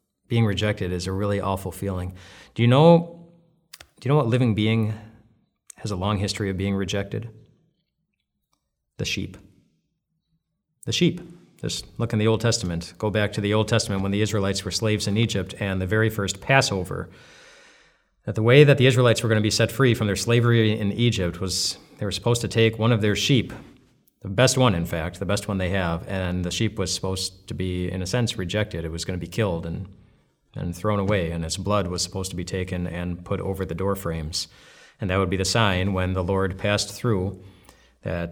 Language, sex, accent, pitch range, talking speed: English, male, American, 95-120 Hz, 210 wpm